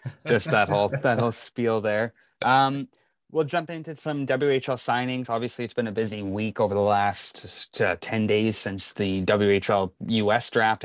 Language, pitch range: English, 100-125 Hz